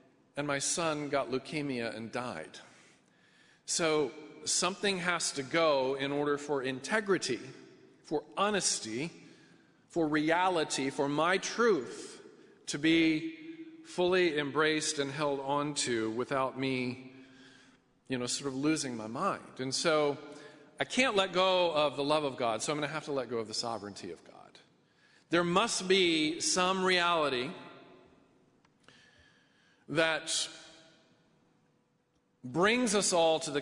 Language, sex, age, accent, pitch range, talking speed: English, male, 40-59, American, 130-170 Hz, 135 wpm